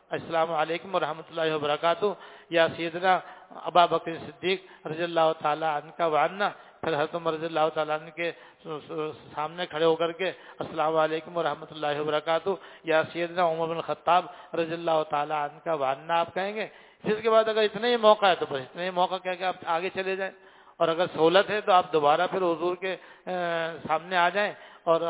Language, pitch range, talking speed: English, 155-185 Hz, 175 wpm